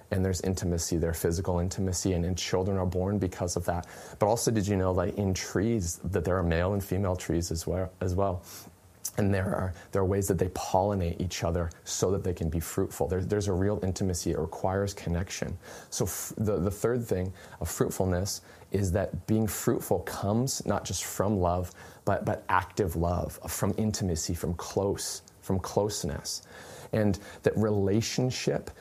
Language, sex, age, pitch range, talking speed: English, male, 30-49, 90-105 Hz, 185 wpm